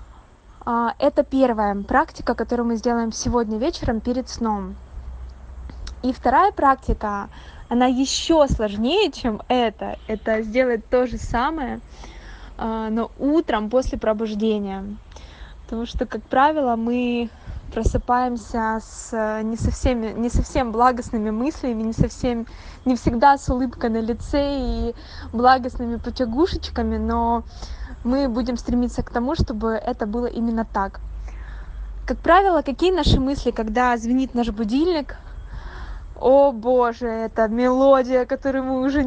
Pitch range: 225-270 Hz